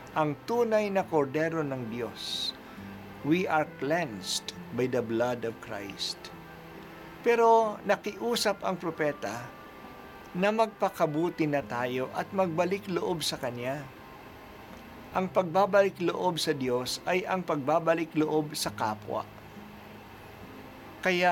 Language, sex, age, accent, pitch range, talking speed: Filipino, male, 50-69, native, 140-185 Hz, 100 wpm